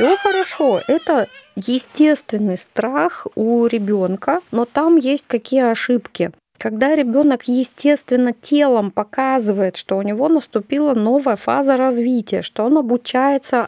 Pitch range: 210-265 Hz